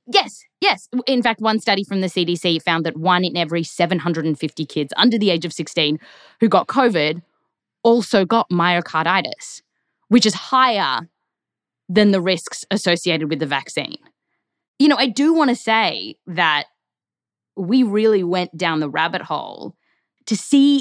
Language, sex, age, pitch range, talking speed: English, female, 10-29, 170-230 Hz, 155 wpm